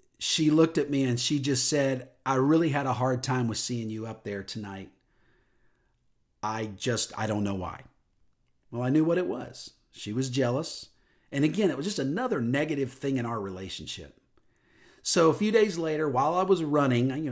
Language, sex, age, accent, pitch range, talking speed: English, male, 50-69, American, 110-150 Hz, 195 wpm